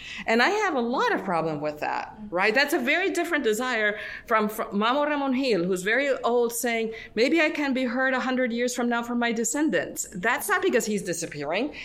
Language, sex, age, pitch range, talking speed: English, female, 40-59, 180-255 Hz, 210 wpm